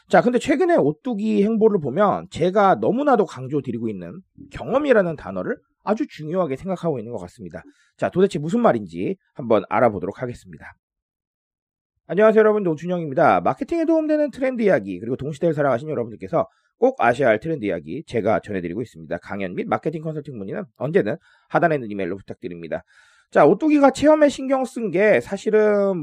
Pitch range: 150-245 Hz